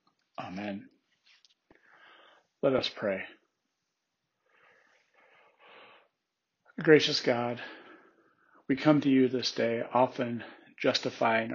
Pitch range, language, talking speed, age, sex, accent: 110-125 Hz, English, 75 wpm, 40-59, male, American